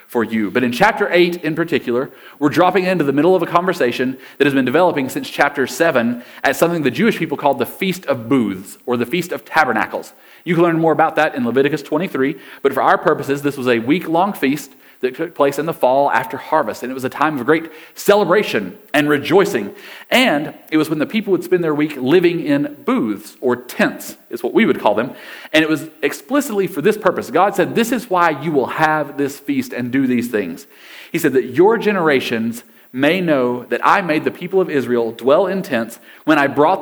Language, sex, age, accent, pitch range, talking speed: English, male, 40-59, American, 130-190 Hz, 225 wpm